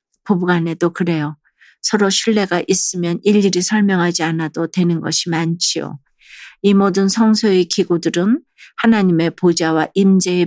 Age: 40-59